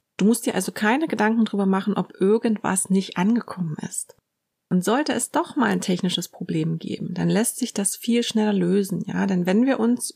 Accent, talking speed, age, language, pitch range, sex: German, 200 wpm, 30-49, German, 185-220 Hz, female